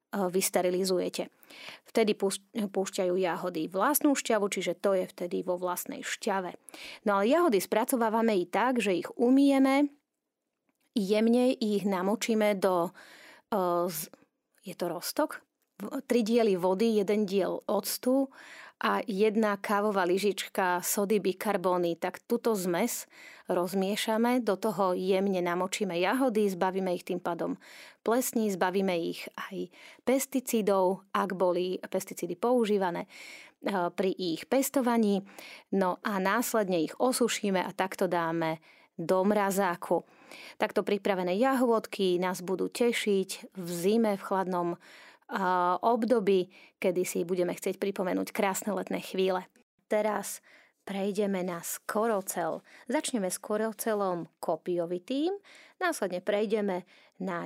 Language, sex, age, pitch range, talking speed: Slovak, female, 30-49, 185-230 Hz, 110 wpm